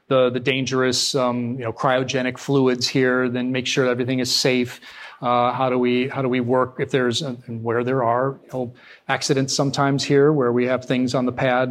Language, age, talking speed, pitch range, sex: Danish, 40-59, 220 wpm, 130-160 Hz, male